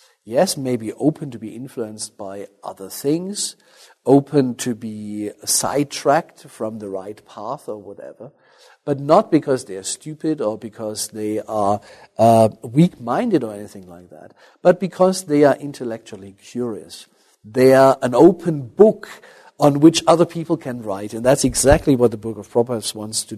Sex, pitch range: male, 110-155 Hz